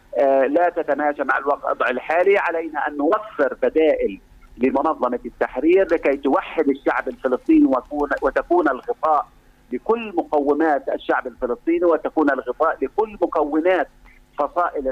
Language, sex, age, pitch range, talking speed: Arabic, male, 50-69, 125-175 Hz, 105 wpm